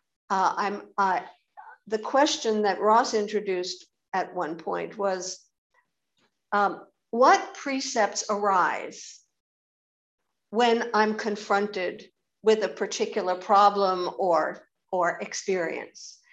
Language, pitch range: English, 200-265 Hz